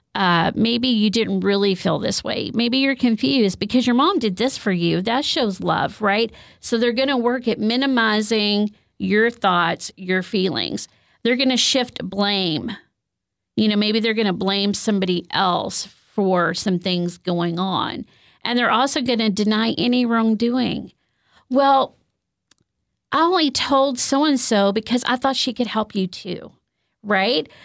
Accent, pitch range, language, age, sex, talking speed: American, 190-250 Hz, English, 40-59, female, 160 wpm